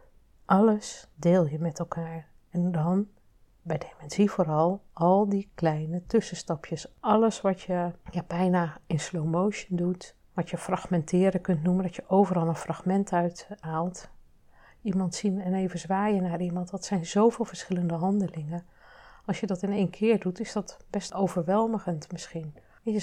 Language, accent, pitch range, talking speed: Dutch, Dutch, 170-215 Hz, 155 wpm